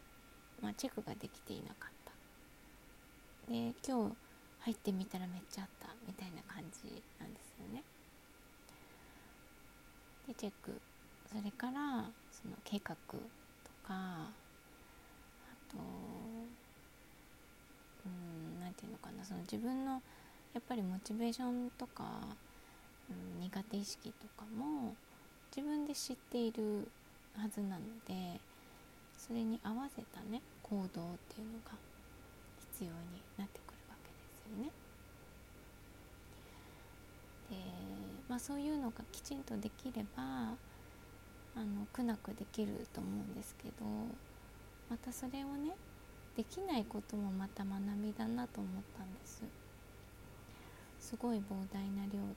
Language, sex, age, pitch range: Japanese, female, 20-39, 180-235 Hz